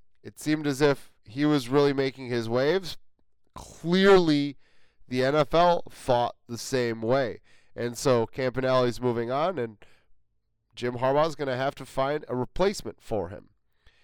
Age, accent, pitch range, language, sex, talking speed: 30-49, American, 125-150 Hz, English, male, 145 wpm